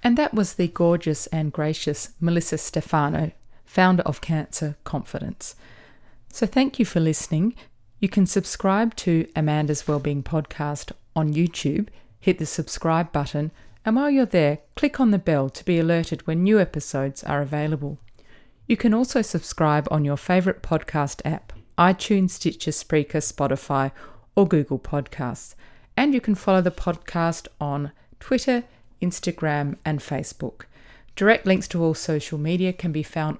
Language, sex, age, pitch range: English, female, 30-49, 150-190 Hz